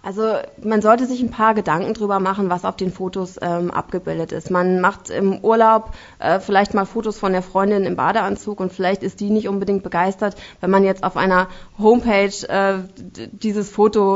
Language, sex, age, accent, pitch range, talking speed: German, female, 20-39, German, 190-215 Hz, 195 wpm